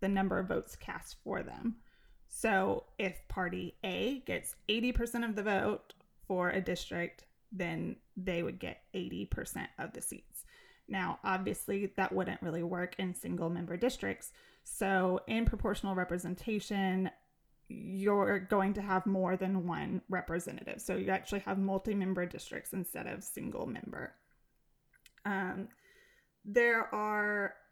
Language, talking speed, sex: English, 135 wpm, female